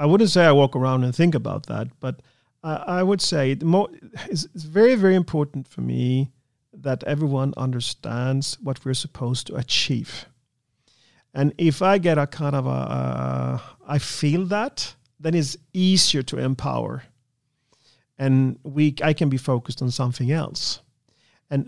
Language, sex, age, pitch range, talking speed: English, male, 40-59, 125-155 Hz, 165 wpm